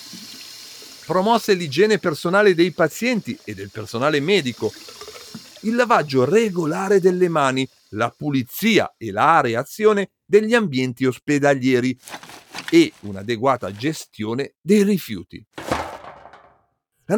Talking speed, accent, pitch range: 100 wpm, native, 130-215 Hz